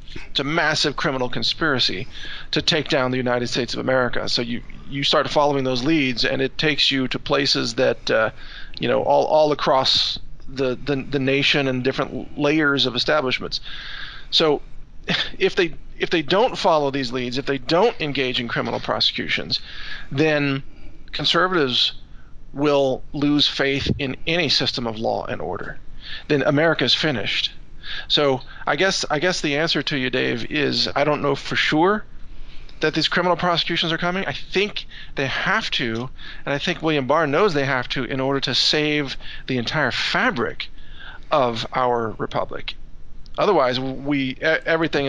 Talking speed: 165 wpm